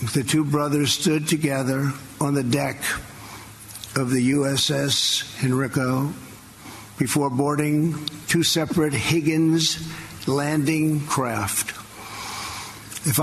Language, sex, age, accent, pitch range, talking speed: English, male, 50-69, American, 110-150 Hz, 90 wpm